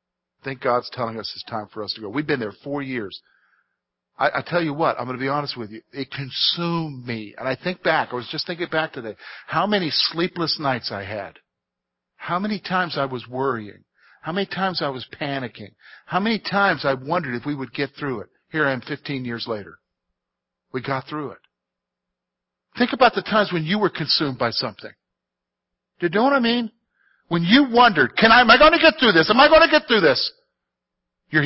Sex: male